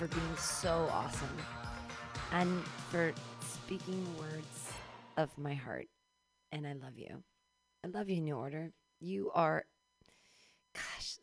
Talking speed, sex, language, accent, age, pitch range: 125 wpm, female, English, American, 40-59, 145-200 Hz